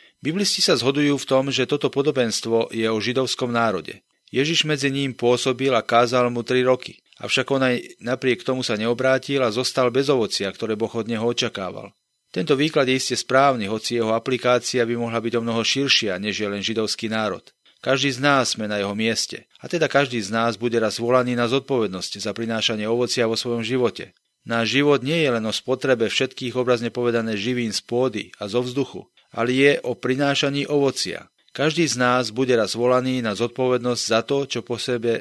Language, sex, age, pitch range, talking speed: Slovak, male, 40-59, 115-135 Hz, 195 wpm